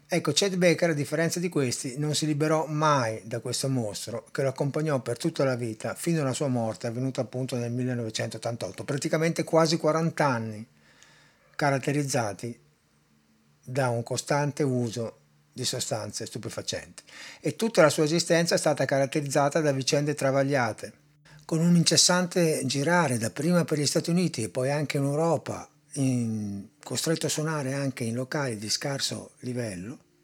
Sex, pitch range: male, 125-160 Hz